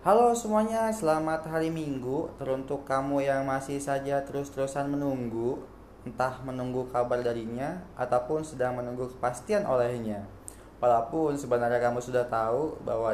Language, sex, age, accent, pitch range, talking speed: Indonesian, male, 20-39, native, 115-145 Hz, 125 wpm